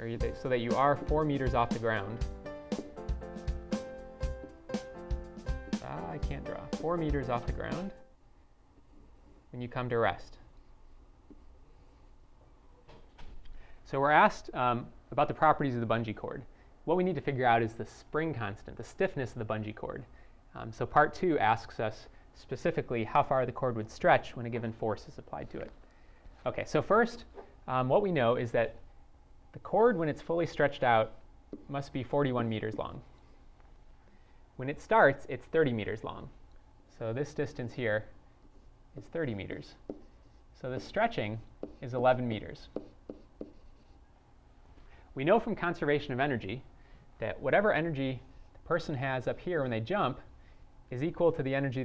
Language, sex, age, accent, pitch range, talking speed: English, male, 30-49, American, 110-145 Hz, 155 wpm